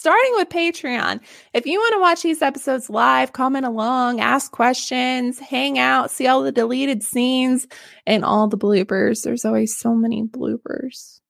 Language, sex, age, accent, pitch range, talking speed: English, female, 20-39, American, 230-325 Hz, 165 wpm